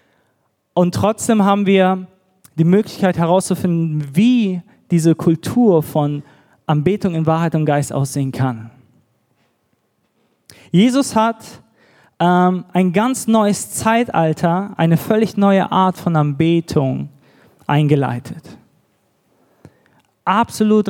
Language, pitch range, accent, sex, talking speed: German, 160-205 Hz, German, male, 95 wpm